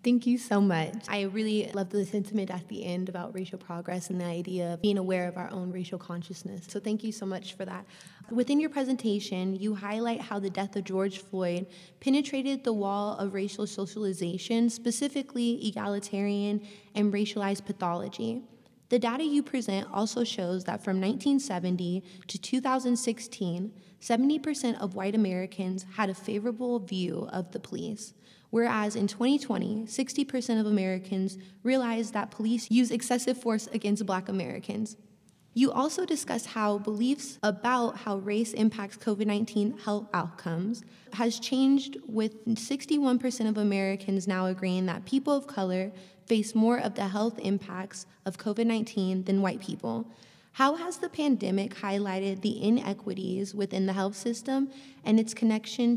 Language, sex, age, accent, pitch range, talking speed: English, female, 20-39, American, 190-235 Hz, 150 wpm